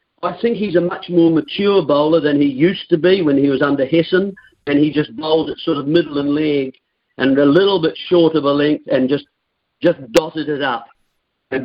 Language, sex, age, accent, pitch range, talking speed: English, male, 50-69, British, 145-175 Hz, 220 wpm